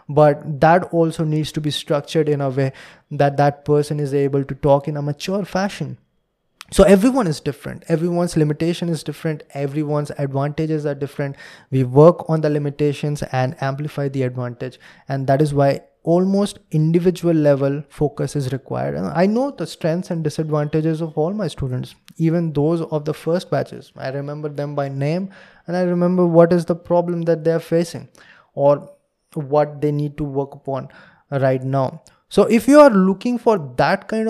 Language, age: English, 20-39